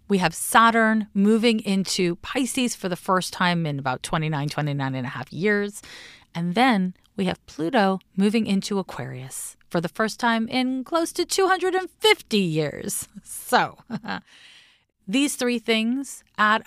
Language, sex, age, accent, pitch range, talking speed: English, female, 30-49, American, 170-225 Hz, 145 wpm